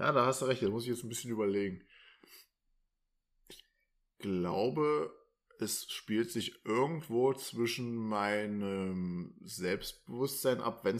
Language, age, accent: German, 20-39, German